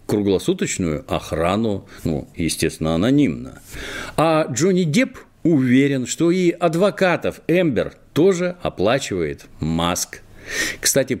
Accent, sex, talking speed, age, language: native, male, 90 wpm, 50-69, Russian